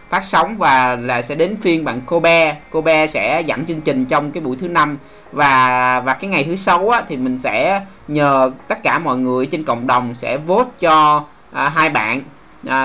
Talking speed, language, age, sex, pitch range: 215 wpm, Vietnamese, 20-39, male, 130-190 Hz